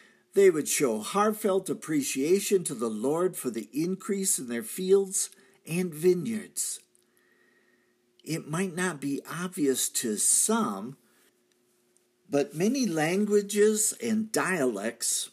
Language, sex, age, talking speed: English, male, 50-69, 110 wpm